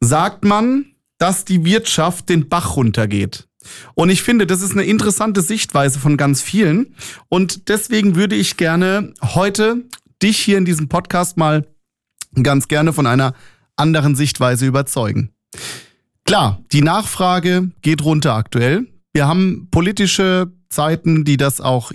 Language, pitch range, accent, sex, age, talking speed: German, 130-180 Hz, German, male, 30-49, 140 wpm